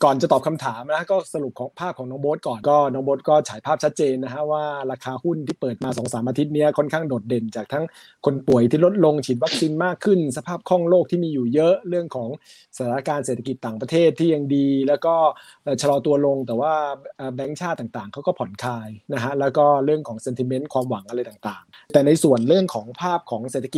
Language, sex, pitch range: Thai, male, 125-155 Hz